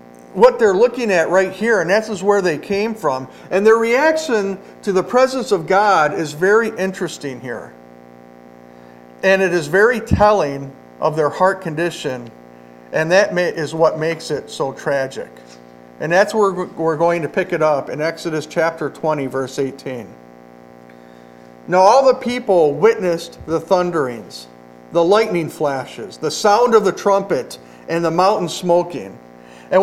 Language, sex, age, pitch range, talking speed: English, male, 50-69, 125-200 Hz, 155 wpm